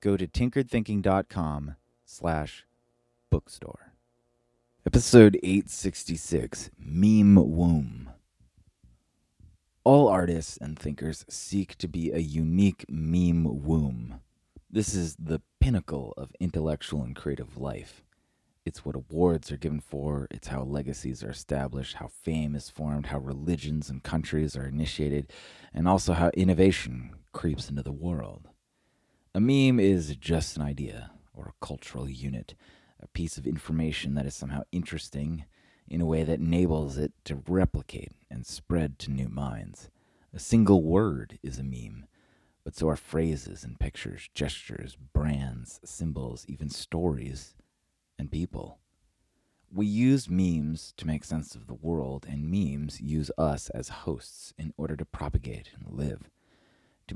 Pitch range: 70-90 Hz